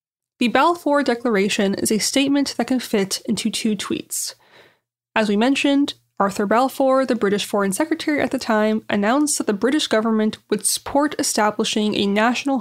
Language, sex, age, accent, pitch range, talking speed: English, female, 20-39, American, 220-280 Hz, 160 wpm